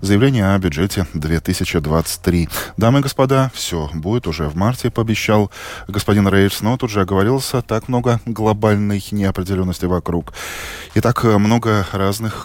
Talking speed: 130 wpm